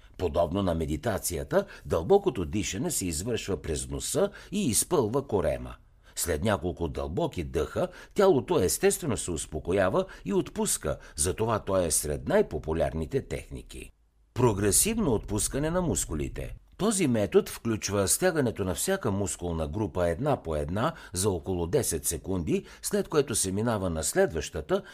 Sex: male